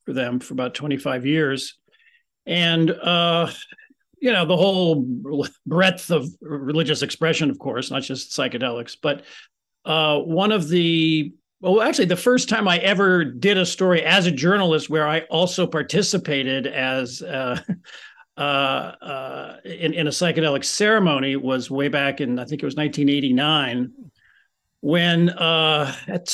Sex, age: male, 50-69